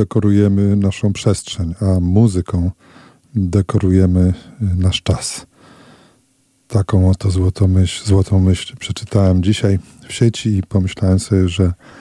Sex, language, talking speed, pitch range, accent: male, Polish, 110 wpm, 95-110 Hz, native